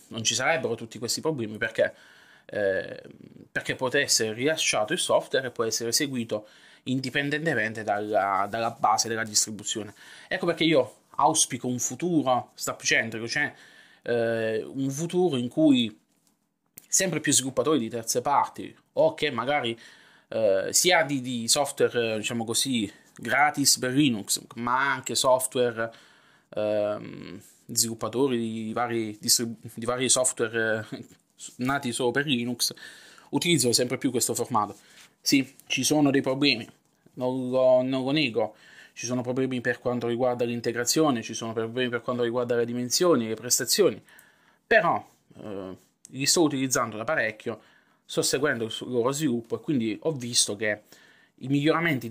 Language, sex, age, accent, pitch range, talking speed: Italian, male, 20-39, native, 115-135 Hz, 140 wpm